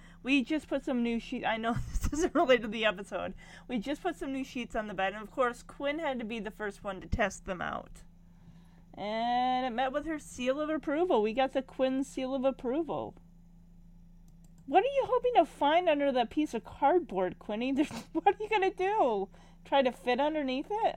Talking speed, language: 215 wpm, English